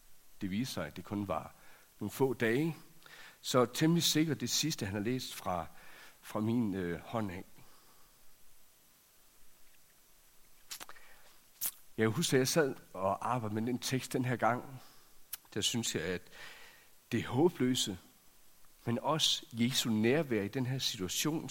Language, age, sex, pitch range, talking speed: Danish, 60-79, male, 105-135 Hz, 150 wpm